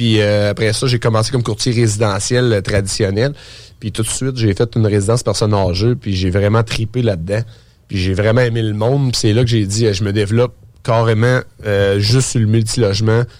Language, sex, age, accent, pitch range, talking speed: French, male, 30-49, Canadian, 105-120 Hz, 215 wpm